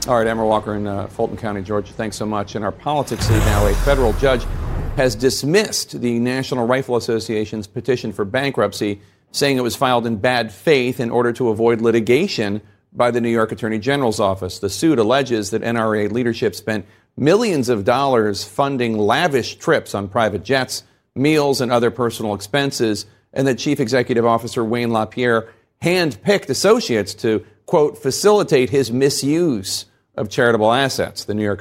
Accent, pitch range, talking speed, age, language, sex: American, 105-135 Hz, 165 wpm, 40-59, English, male